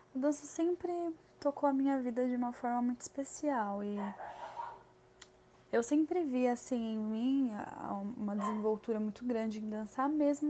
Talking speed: 150 wpm